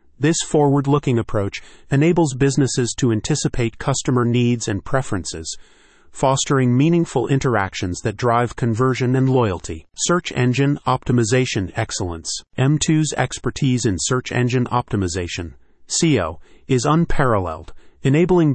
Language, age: English, 30-49